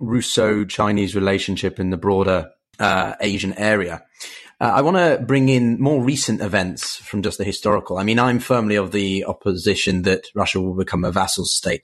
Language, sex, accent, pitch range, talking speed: English, male, British, 95-110 Hz, 175 wpm